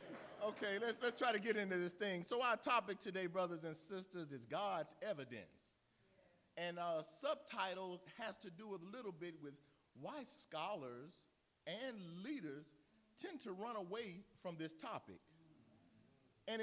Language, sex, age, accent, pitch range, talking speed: English, male, 40-59, American, 160-215 Hz, 150 wpm